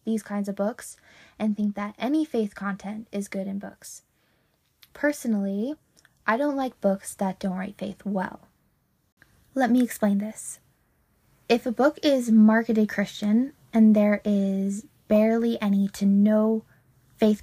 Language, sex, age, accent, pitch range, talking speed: English, female, 10-29, American, 195-225 Hz, 145 wpm